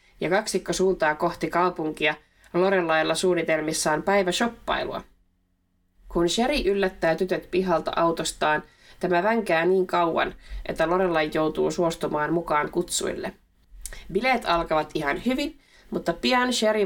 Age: 20-39